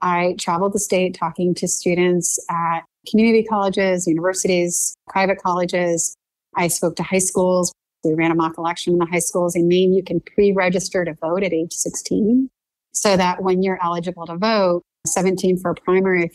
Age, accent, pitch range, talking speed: 30-49, American, 170-190 Hz, 180 wpm